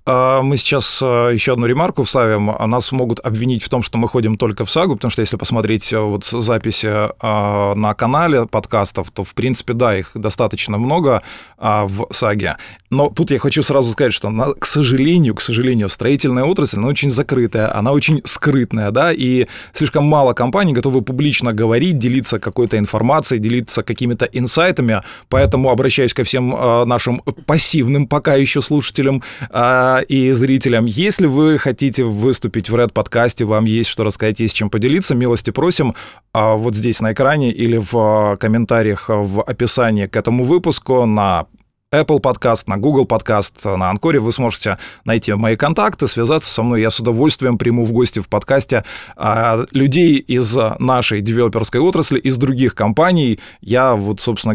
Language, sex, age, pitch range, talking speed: Russian, male, 20-39, 110-135 Hz, 155 wpm